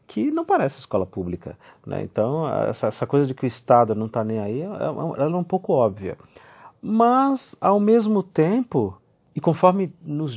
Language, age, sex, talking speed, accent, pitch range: Portuguese, 50-69, male, 180 wpm, Brazilian, 110-165 Hz